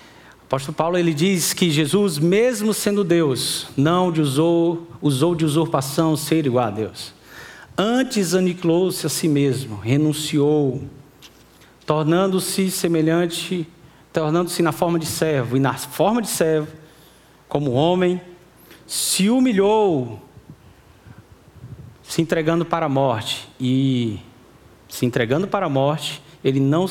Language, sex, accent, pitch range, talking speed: Portuguese, male, Brazilian, 120-165 Hz, 120 wpm